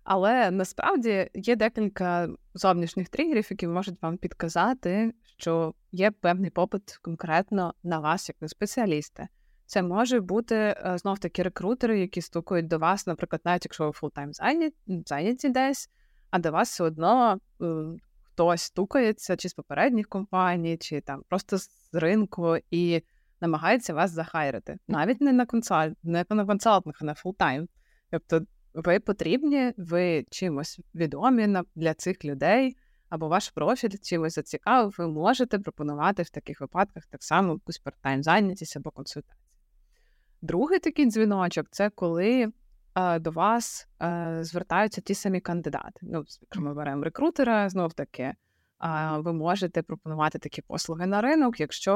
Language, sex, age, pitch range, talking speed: Ukrainian, female, 20-39, 165-210 Hz, 135 wpm